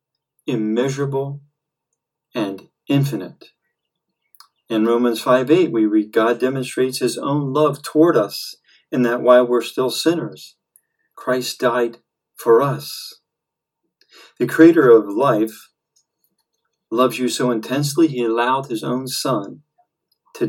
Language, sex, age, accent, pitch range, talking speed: English, male, 40-59, American, 125-160 Hz, 115 wpm